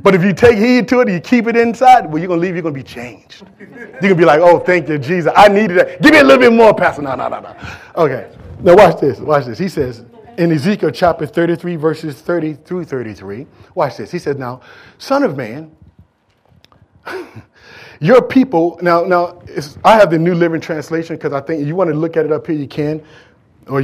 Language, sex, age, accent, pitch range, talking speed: English, male, 30-49, American, 150-205 Hz, 240 wpm